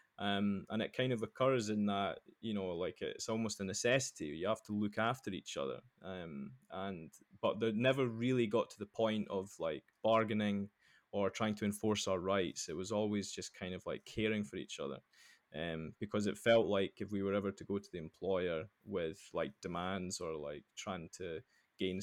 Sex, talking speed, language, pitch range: male, 200 wpm, English, 95-110 Hz